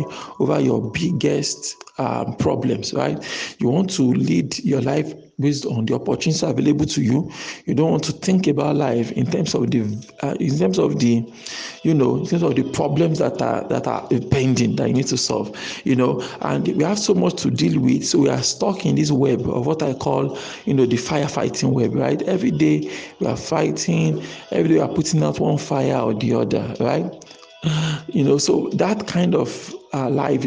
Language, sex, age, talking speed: English, male, 50-69, 205 wpm